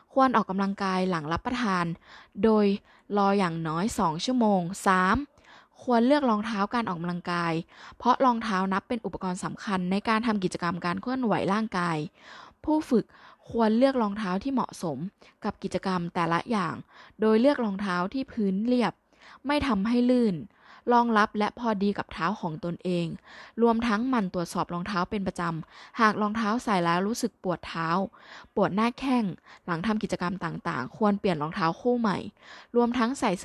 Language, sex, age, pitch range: Thai, female, 20-39, 180-230 Hz